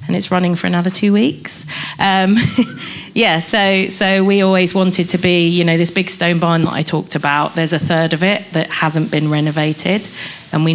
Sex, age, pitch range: female, 30-49, 165-195 Hz